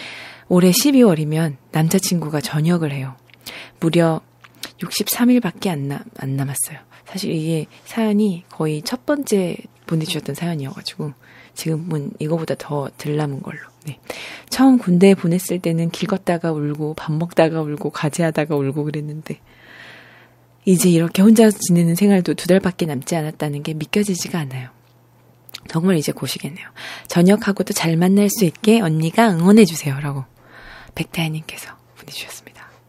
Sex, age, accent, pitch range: female, 20-39, native, 150-195 Hz